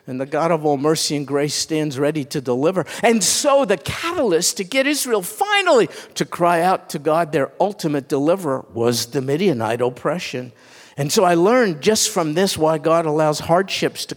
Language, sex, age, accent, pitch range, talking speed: English, male, 50-69, American, 145-185 Hz, 185 wpm